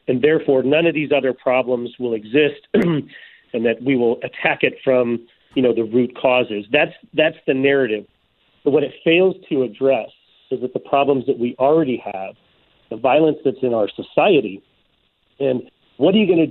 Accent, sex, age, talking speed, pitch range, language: American, male, 40-59, 185 wpm, 120-150 Hz, English